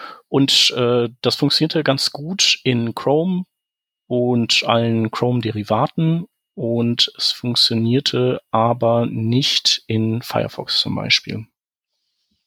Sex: male